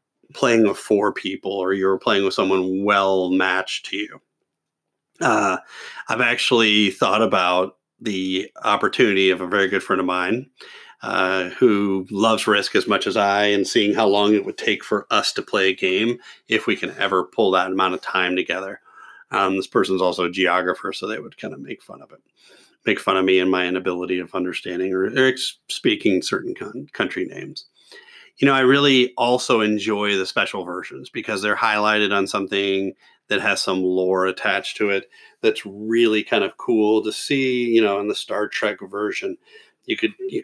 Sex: male